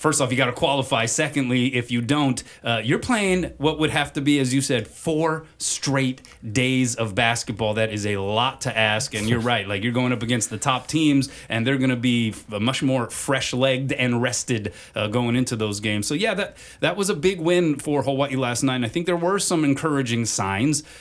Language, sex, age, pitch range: English, male, 30-49, 115-145 Hz